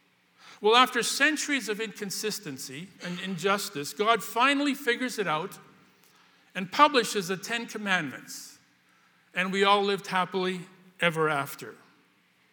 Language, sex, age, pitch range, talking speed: English, male, 60-79, 185-240 Hz, 115 wpm